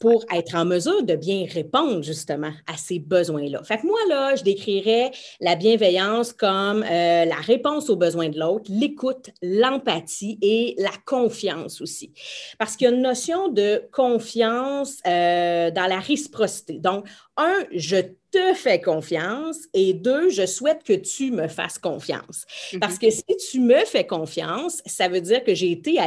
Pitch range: 180-255 Hz